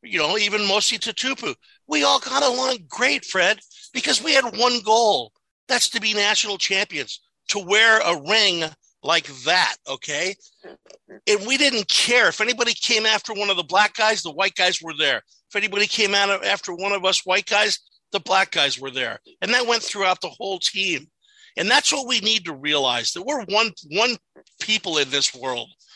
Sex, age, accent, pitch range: male, 50-69, American, 160-225 Hz